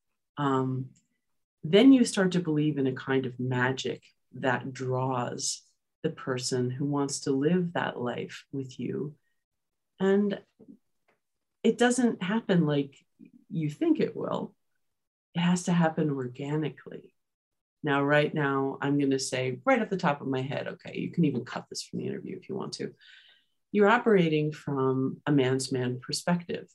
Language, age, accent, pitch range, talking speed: English, 40-59, American, 130-170 Hz, 155 wpm